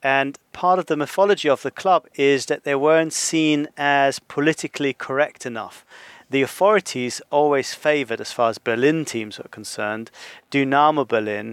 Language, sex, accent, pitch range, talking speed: English, male, British, 120-140 Hz, 155 wpm